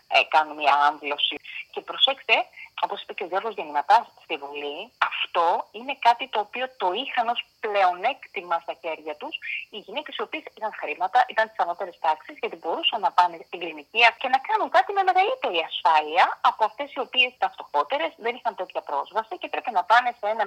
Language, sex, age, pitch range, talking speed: Greek, female, 30-49, 165-255 Hz, 185 wpm